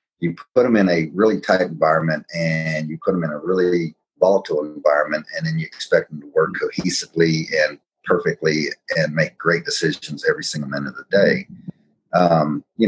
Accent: American